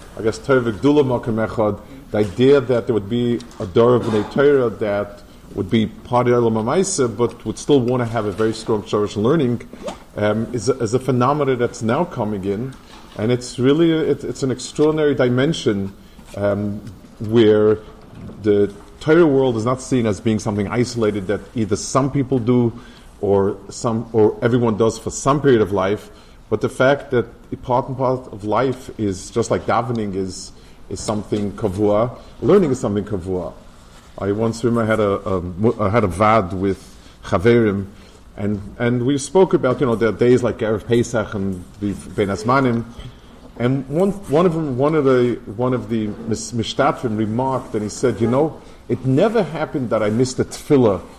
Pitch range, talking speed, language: 105-130 Hz, 170 wpm, English